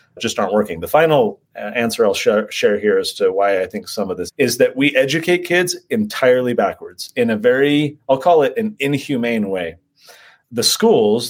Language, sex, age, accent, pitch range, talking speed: English, male, 30-49, American, 140-220 Hz, 185 wpm